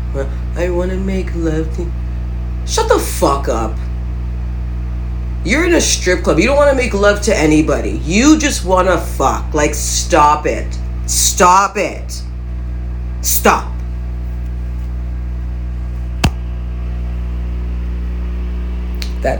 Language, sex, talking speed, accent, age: English, female, 100 wpm, American, 40-59